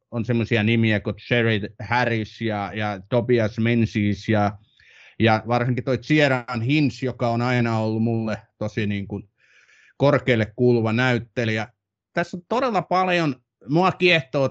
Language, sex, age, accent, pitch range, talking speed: Finnish, male, 30-49, native, 105-130 Hz, 135 wpm